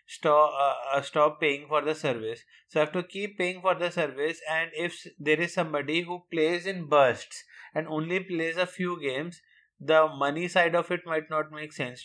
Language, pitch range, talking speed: English, 150-180 Hz, 200 wpm